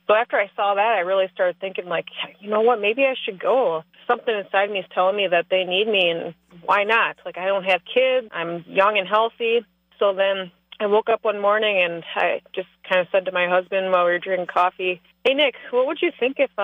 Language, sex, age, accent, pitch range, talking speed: English, female, 30-49, American, 190-240 Hz, 240 wpm